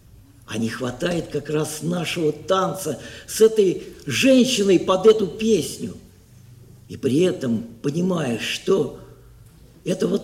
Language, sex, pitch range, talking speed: Russian, male, 190-255 Hz, 110 wpm